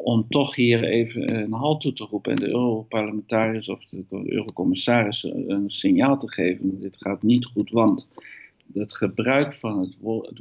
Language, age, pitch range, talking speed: Dutch, 50-69, 100-140 Hz, 160 wpm